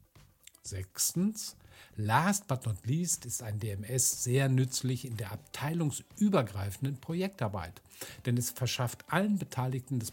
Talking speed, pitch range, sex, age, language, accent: 120 wpm, 115-140 Hz, male, 50-69, German, German